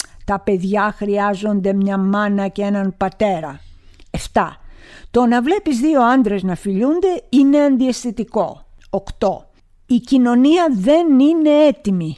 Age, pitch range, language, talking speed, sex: 50-69, 190-245 Hz, Greek, 120 wpm, female